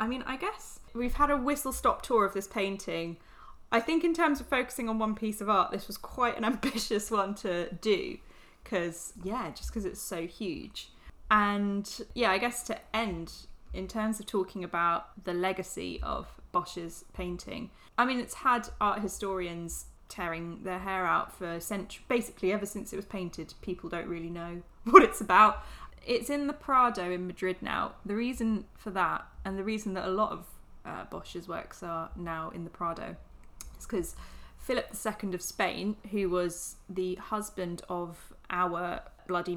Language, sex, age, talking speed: English, female, 10-29, 180 wpm